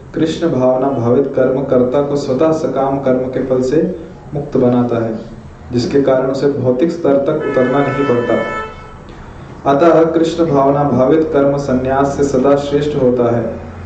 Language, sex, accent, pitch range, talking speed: Hindi, male, native, 130-165 Hz, 70 wpm